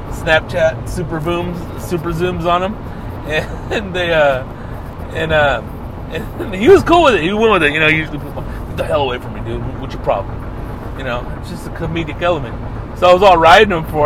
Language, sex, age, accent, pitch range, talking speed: English, male, 30-49, American, 115-160 Hz, 215 wpm